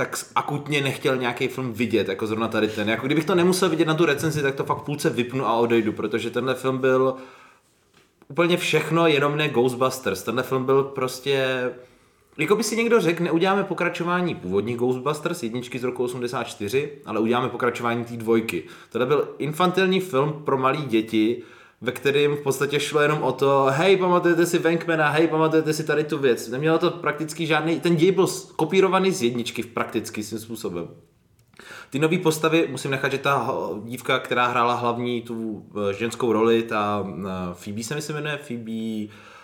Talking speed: 180 wpm